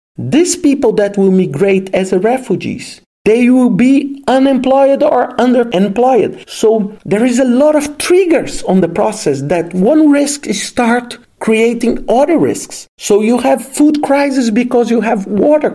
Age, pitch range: 50-69, 165-260 Hz